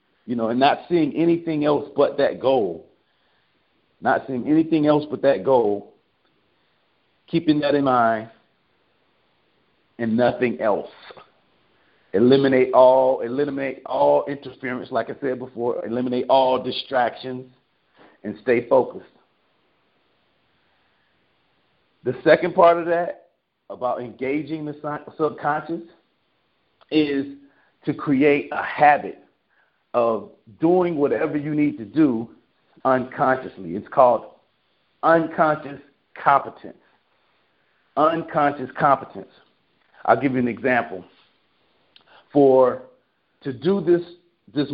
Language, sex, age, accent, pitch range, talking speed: English, male, 40-59, American, 130-155 Hz, 105 wpm